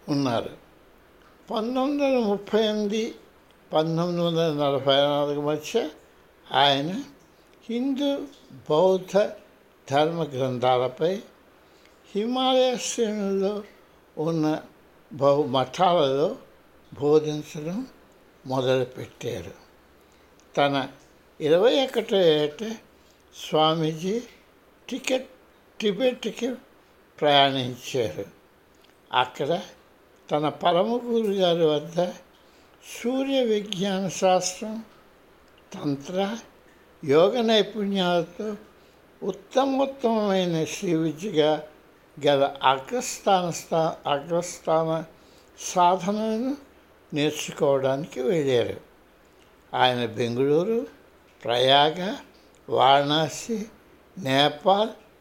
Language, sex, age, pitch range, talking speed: Hindi, male, 60-79, 150-220 Hz, 55 wpm